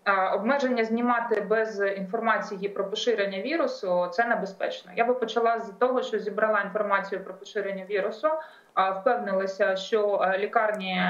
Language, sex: Ukrainian, female